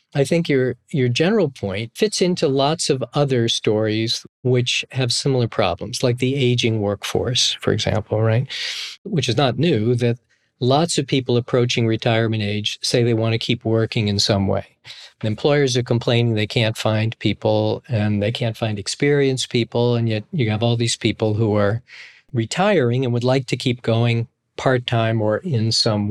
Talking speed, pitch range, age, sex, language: 175 wpm, 110-135 Hz, 50-69, male, English